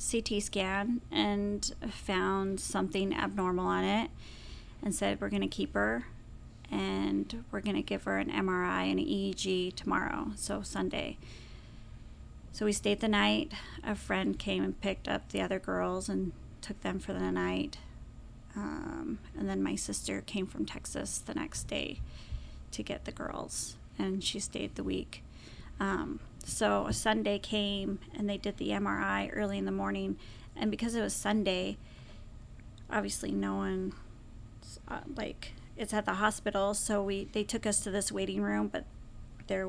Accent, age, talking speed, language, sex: American, 30-49, 160 wpm, English, female